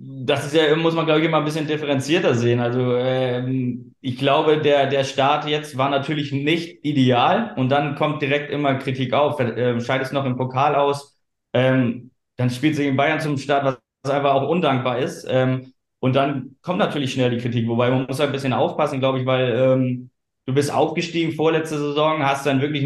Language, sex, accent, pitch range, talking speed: German, male, German, 130-150 Hz, 200 wpm